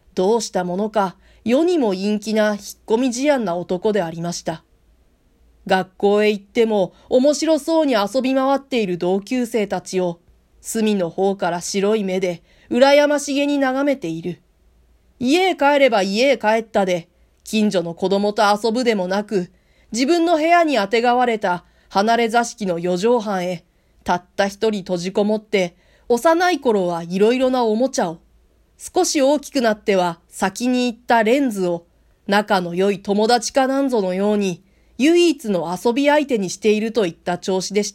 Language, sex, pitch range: Japanese, female, 180-250 Hz